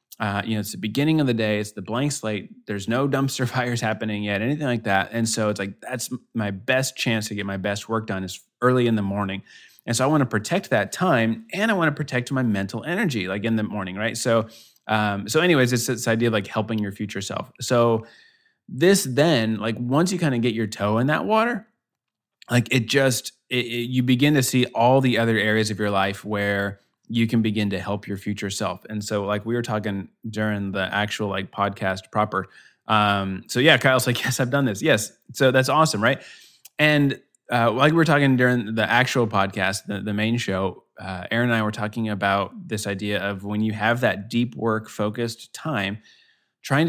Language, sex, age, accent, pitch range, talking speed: English, male, 20-39, American, 105-125 Hz, 220 wpm